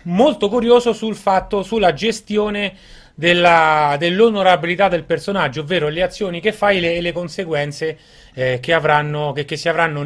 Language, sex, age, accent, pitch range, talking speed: Italian, male, 30-49, native, 155-195 Hz, 155 wpm